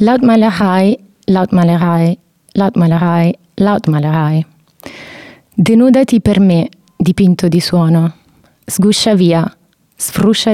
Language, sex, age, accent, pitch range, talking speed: English, female, 30-49, Italian, 170-205 Hz, 95 wpm